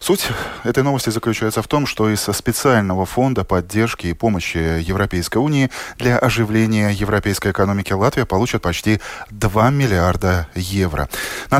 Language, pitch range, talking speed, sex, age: Russian, 95-120 Hz, 135 wpm, male, 20-39